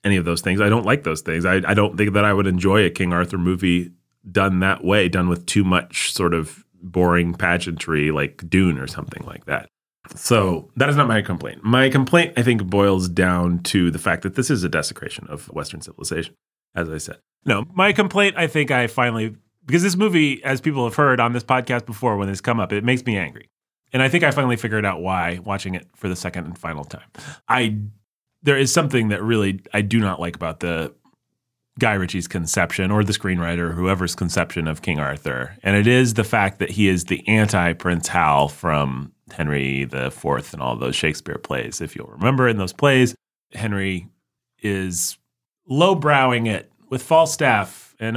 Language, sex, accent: English, male, American